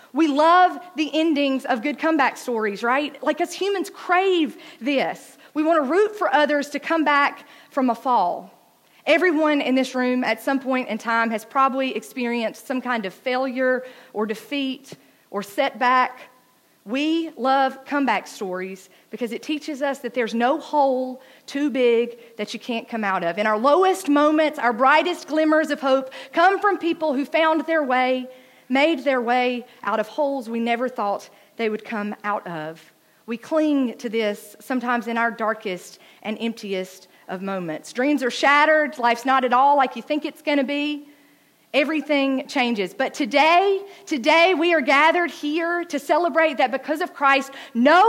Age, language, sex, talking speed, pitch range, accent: 40-59, English, female, 170 wpm, 235-305 Hz, American